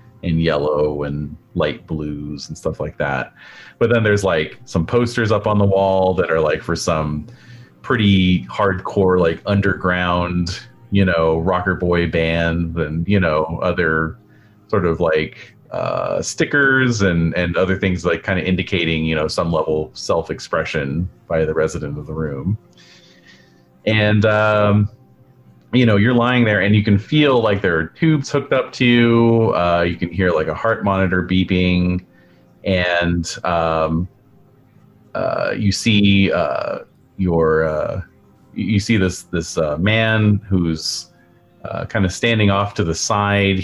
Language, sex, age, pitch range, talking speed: English, male, 30-49, 85-105 Hz, 155 wpm